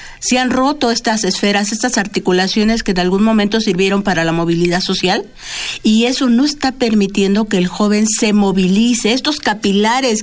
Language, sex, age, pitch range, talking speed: Spanish, female, 50-69, 185-235 Hz, 165 wpm